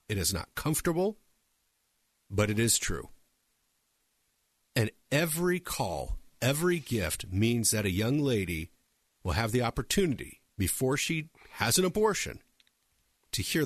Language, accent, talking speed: English, American, 125 wpm